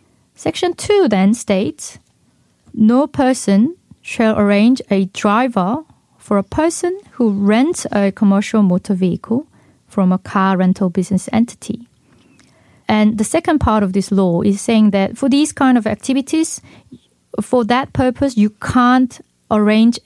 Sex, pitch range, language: female, 200-255 Hz, Korean